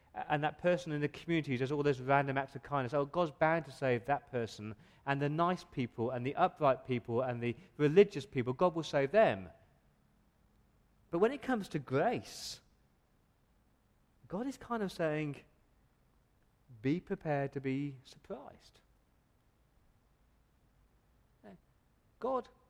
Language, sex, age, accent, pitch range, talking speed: English, male, 40-59, British, 135-175 Hz, 145 wpm